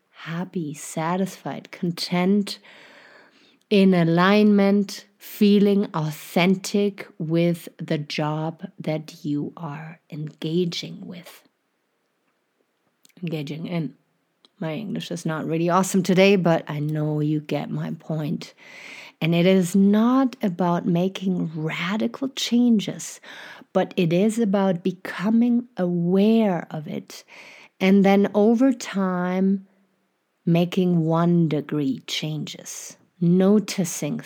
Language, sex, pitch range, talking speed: English, female, 160-200 Hz, 100 wpm